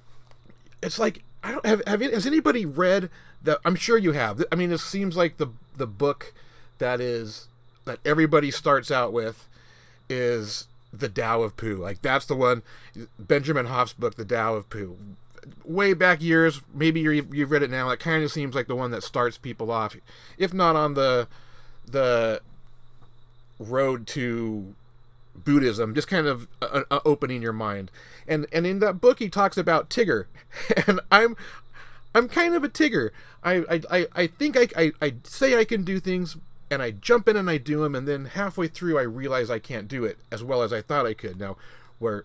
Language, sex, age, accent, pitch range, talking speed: English, male, 30-49, American, 120-180 Hz, 195 wpm